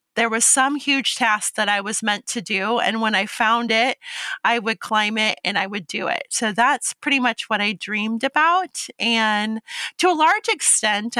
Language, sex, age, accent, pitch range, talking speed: English, female, 30-49, American, 225-270 Hz, 205 wpm